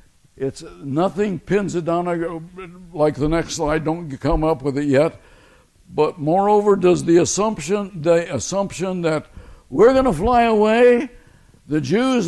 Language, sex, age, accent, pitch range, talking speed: English, male, 60-79, American, 145-190 Hz, 145 wpm